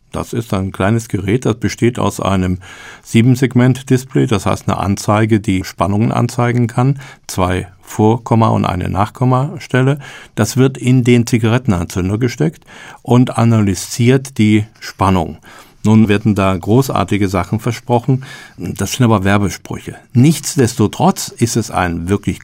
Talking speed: 130 wpm